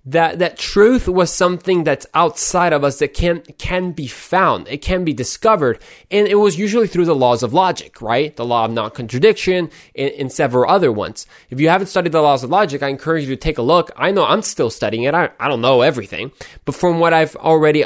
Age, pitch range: 20-39, 130-180 Hz